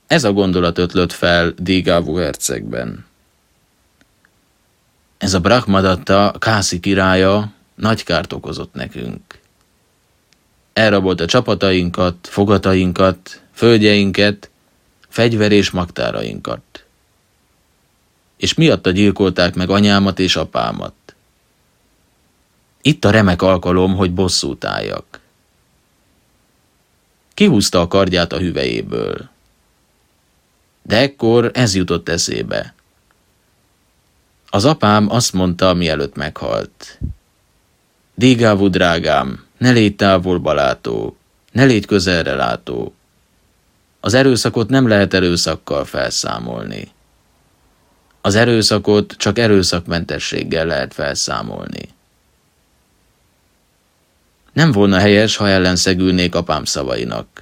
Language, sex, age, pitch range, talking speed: Hungarian, male, 30-49, 90-105 Hz, 85 wpm